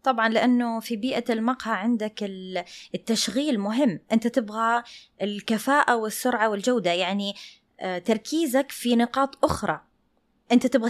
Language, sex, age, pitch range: English, female, 20-39, 215-265 Hz